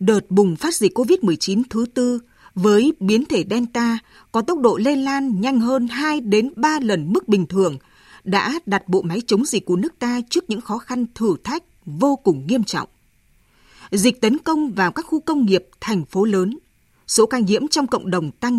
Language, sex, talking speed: Vietnamese, female, 200 wpm